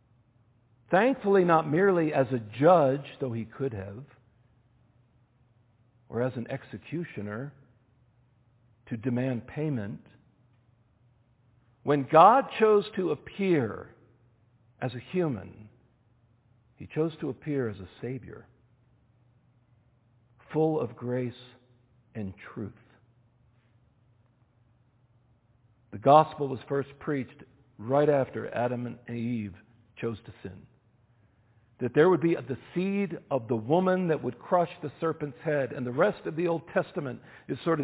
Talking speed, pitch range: 120 wpm, 120-160 Hz